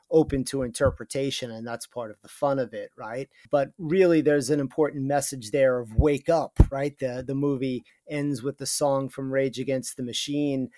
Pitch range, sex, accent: 125-145 Hz, male, American